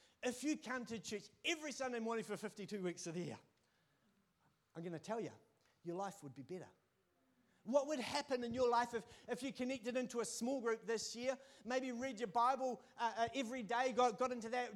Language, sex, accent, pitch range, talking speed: English, male, Australian, 180-250 Hz, 210 wpm